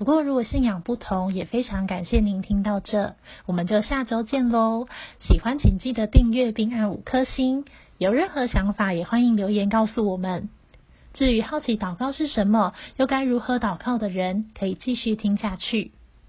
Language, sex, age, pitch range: Chinese, female, 30-49, 200-245 Hz